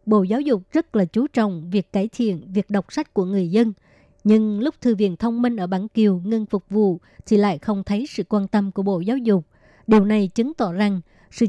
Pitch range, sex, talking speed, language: 200-230 Hz, male, 235 wpm, Vietnamese